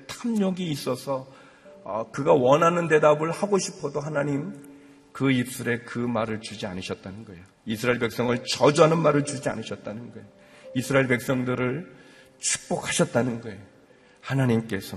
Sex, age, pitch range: male, 40-59, 115-155 Hz